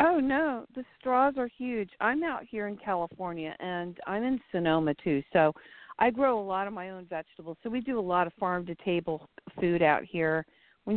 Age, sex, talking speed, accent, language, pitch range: 50-69, female, 195 wpm, American, English, 175-220 Hz